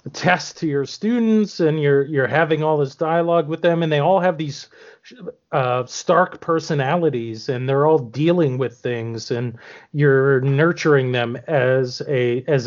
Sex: male